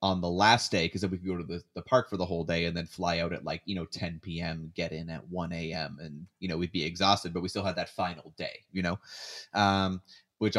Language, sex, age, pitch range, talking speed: English, male, 30-49, 85-105 Hz, 280 wpm